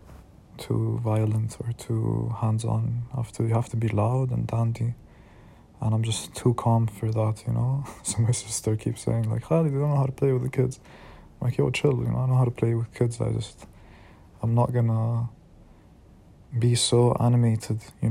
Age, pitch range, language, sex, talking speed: 20-39, 110-130 Hz, English, male, 205 wpm